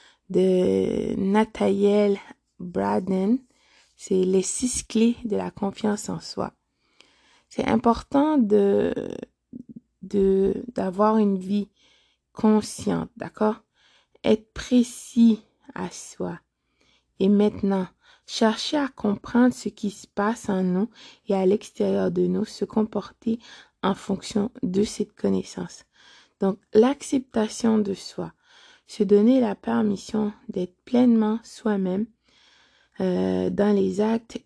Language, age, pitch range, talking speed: French, 20-39, 195-240 Hz, 110 wpm